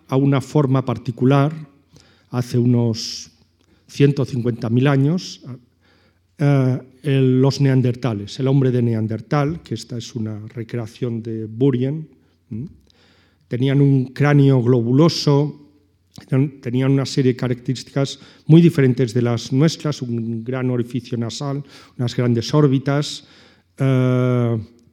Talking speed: 115 wpm